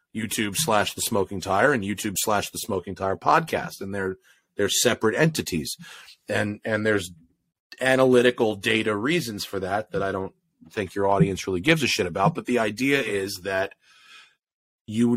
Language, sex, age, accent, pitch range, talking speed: English, male, 30-49, American, 95-120 Hz, 165 wpm